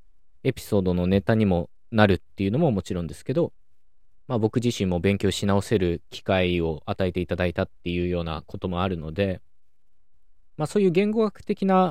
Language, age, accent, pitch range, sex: Japanese, 20-39, native, 80-110 Hz, male